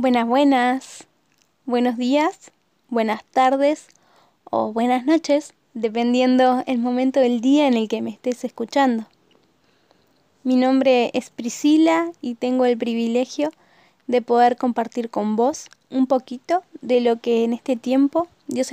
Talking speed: 135 wpm